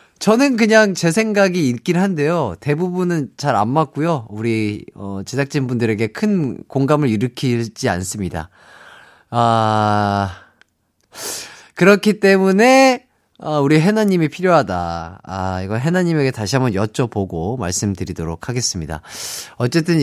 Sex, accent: male, native